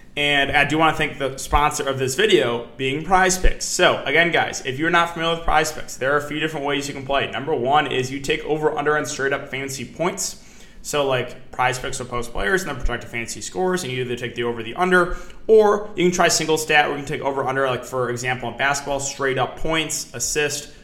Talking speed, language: 240 wpm, English